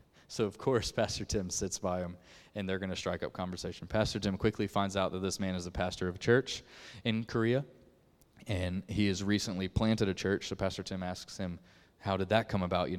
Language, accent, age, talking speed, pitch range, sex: English, American, 20-39, 225 wpm, 90-105 Hz, male